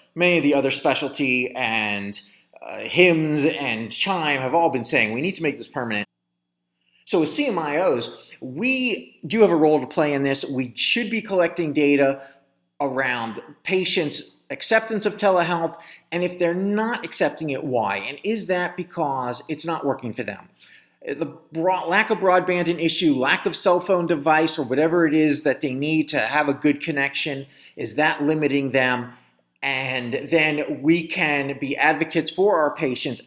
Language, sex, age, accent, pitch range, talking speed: English, male, 30-49, American, 135-175 Hz, 170 wpm